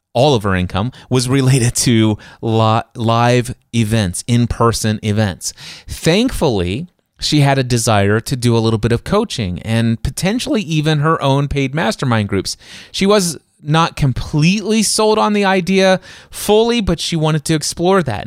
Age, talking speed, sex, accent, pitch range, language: 30-49, 150 wpm, male, American, 105-140 Hz, English